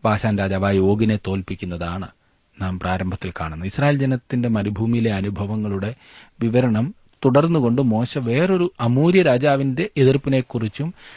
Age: 40-59